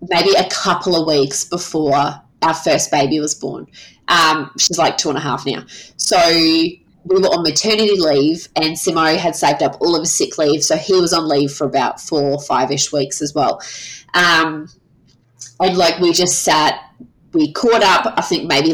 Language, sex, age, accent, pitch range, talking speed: English, female, 20-39, Australian, 150-180 Hz, 190 wpm